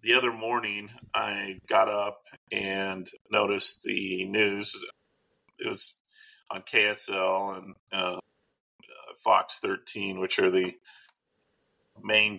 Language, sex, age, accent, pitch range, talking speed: English, male, 40-59, American, 100-115 Hz, 105 wpm